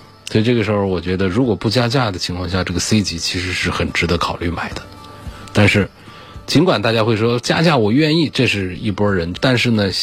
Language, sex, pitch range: Chinese, male, 95-115 Hz